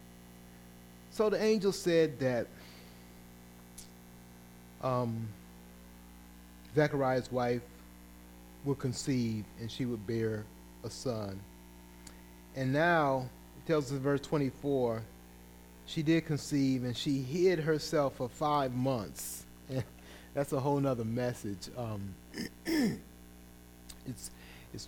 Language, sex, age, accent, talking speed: English, male, 30-49, American, 100 wpm